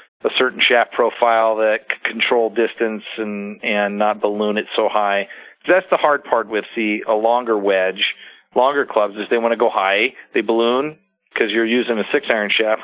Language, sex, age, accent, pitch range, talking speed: English, male, 40-59, American, 105-130 Hz, 185 wpm